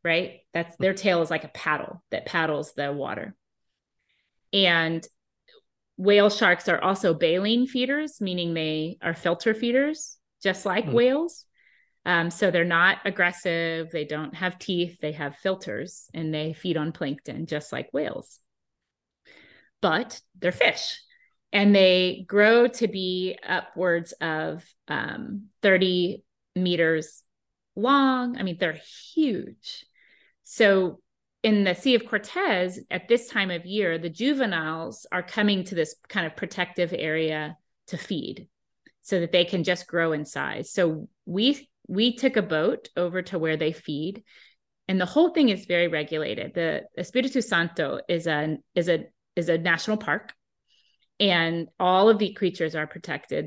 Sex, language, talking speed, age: female, English, 150 wpm, 30-49